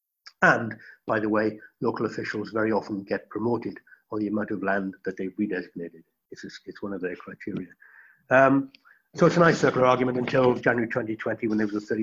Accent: British